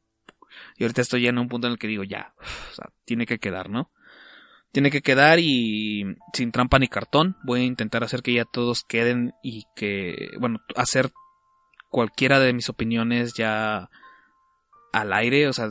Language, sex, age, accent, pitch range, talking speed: Spanish, male, 20-39, Mexican, 115-145 Hz, 180 wpm